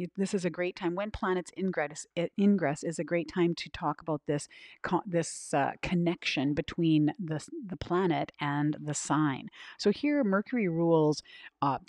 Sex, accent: female, American